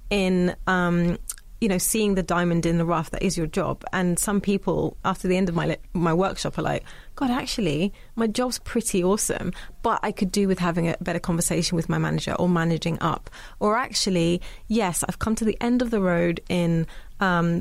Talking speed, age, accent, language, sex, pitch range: 205 wpm, 20-39, British, English, female, 170-210 Hz